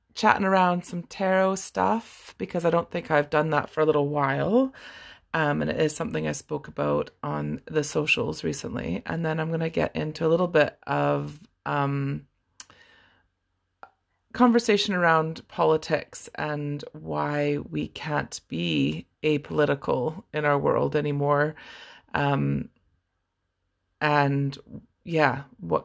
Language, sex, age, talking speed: English, female, 30-49, 130 wpm